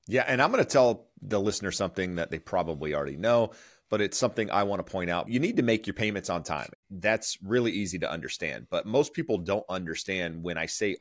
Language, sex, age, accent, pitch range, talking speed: English, male, 30-49, American, 100-130 Hz, 235 wpm